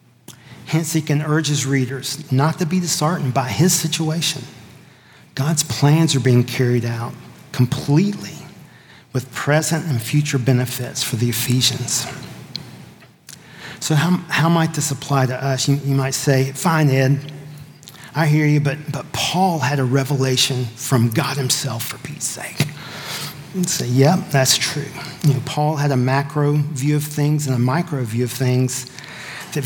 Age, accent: 40-59, American